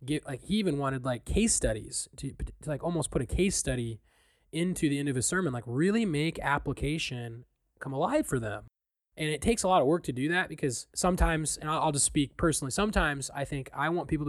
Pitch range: 130-160 Hz